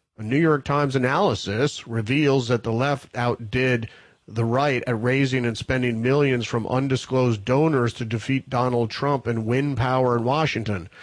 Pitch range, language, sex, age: 115-140 Hz, English, male, 40-59